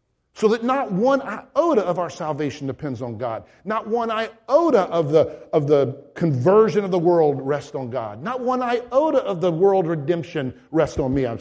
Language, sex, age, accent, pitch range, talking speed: English, male, 50-69, American, 120-170 Hz, 185 wpm